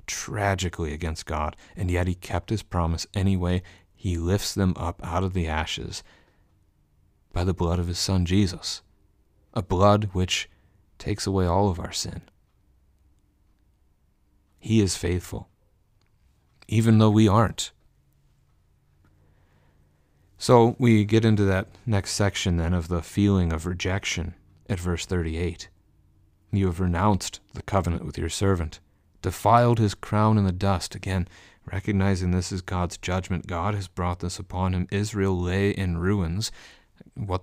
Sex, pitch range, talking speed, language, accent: male, 85-100 Hz, 140 wpm, English, American